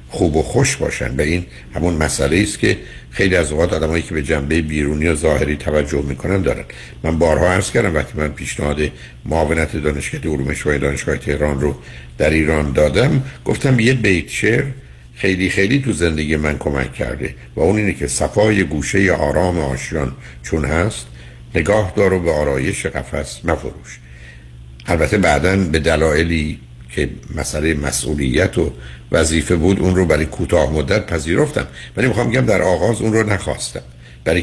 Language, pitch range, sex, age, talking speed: Persian, 65-90 Hz, male, 60-79, 155 wpm